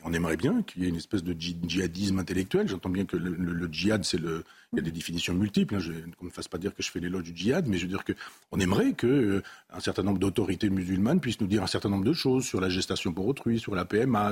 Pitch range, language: 95-115 Hz, French